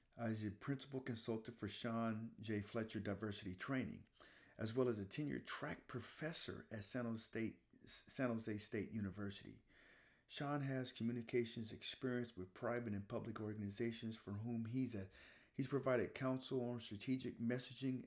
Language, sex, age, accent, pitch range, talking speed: English, male, 40-59, American, 105-125 Hz, 150 wpm